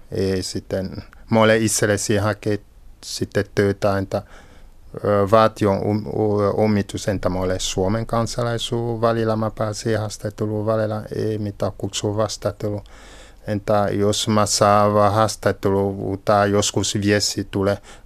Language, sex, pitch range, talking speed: Finnish, male, 100-115 Hz, 105 wpm